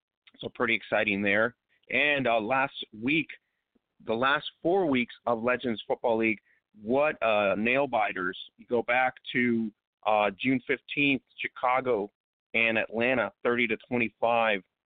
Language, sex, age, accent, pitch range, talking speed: English, male, 40-59, American, 110-125 Hz, 135 wpm